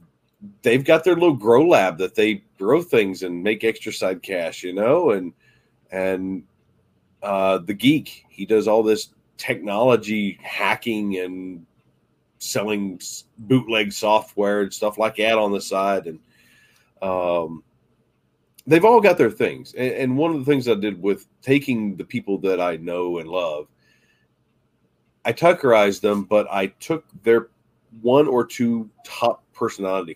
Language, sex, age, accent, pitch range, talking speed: English, male, 40-59, American, 95-120 Hz, 145 wpm